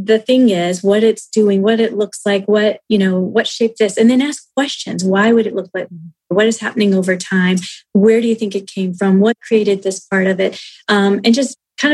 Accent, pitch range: American, 200-250 Hz